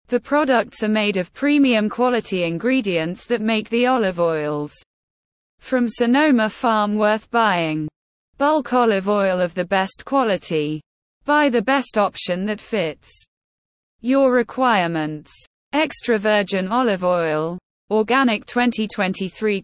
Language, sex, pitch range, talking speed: English, female, 180-245 Hz, 120 wpm